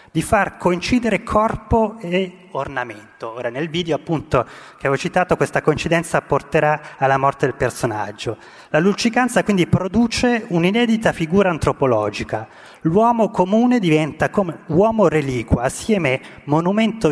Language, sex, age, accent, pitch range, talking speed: Italian, male, 30-49, native, 135-185 Hz, 125 wpm